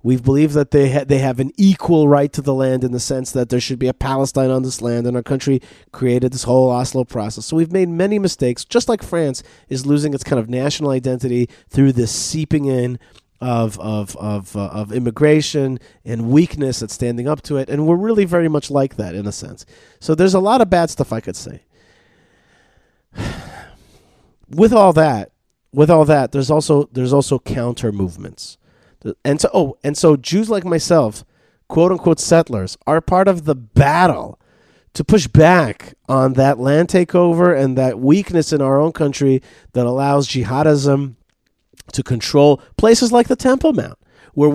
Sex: male